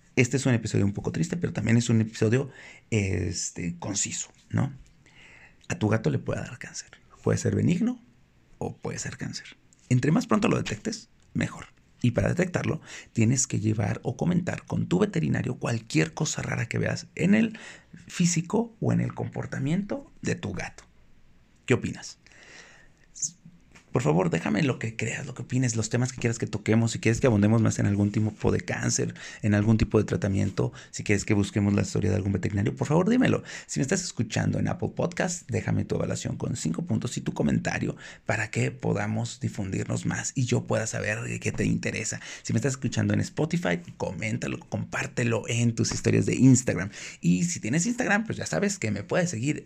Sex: male